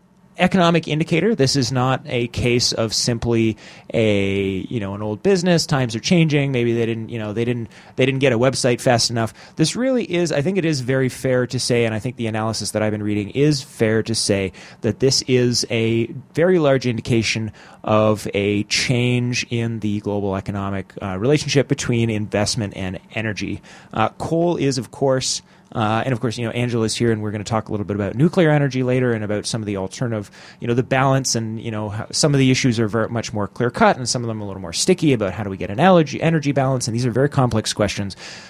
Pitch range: 110-140 Hz